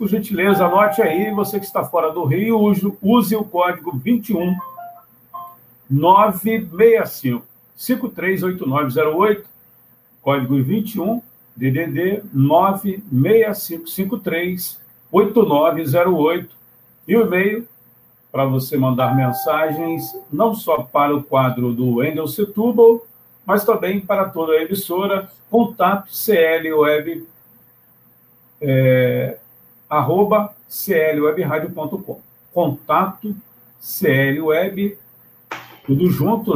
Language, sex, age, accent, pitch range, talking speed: Portuguese, male, 60-79, Brazilian, 140-205 Hz, 85 wpm